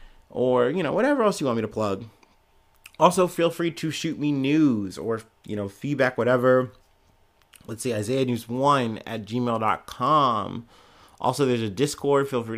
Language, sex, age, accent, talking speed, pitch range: English, male, 30-49, American, 160 wpm, 105-130 Hz